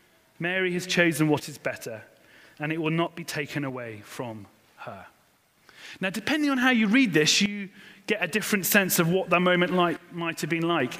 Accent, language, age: British, English, 30-49